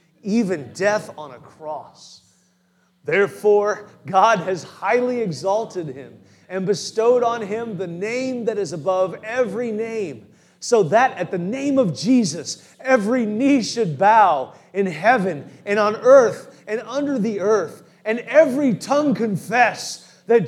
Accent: American